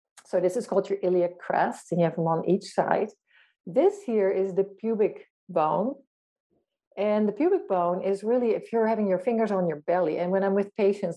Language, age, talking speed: English, 50-69, 210 wpm